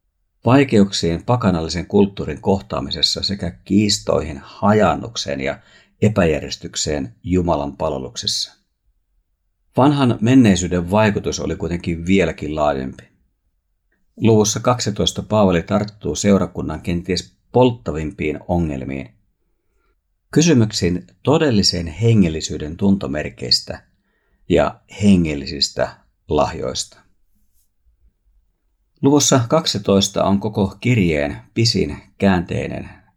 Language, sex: Finnish, male